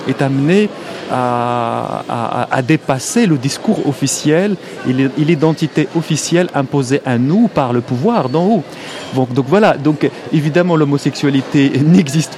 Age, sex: 30-49, male